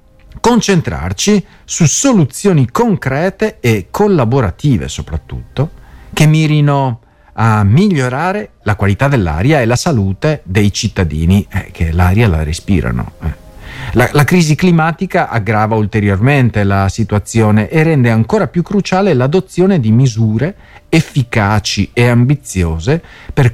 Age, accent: 40-59, native